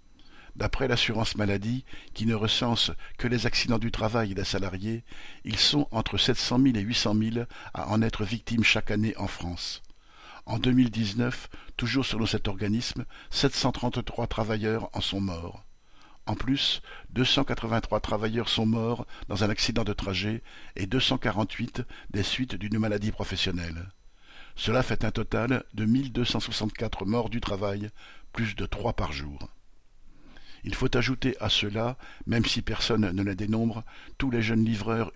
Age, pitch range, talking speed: 60-79, 100-120 Hz, 150 wpm